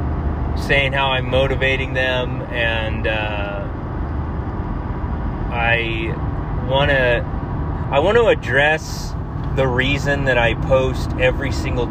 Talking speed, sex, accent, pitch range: 105 wpm, male, American, 105-135 Hz